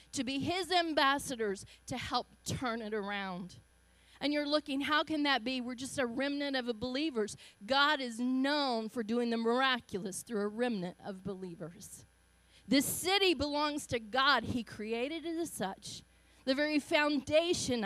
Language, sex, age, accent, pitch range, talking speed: English, female, 40-59, American, 230-315 Hz, 160 wpm